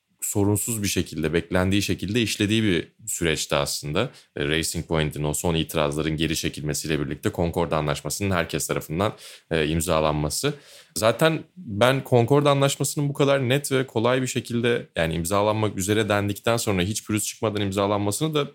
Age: 30-49